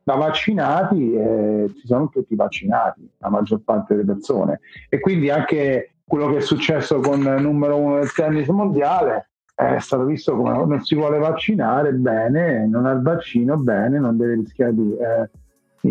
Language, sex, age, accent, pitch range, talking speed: Italian, male, 50-69, native, 110-150 Hz, 170 wpm